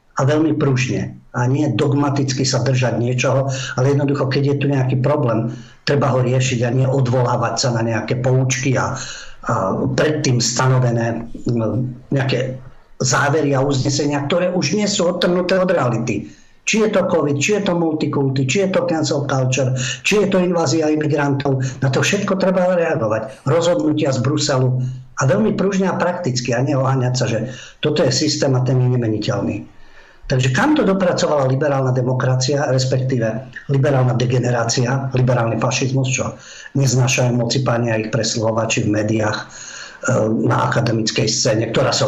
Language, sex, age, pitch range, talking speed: Slovak, male, 50-69, 125-140 Hz, 155 wpm